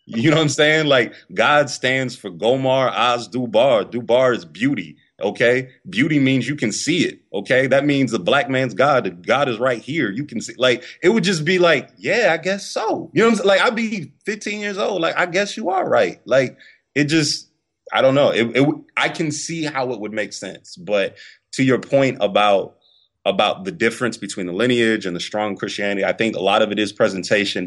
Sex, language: male, English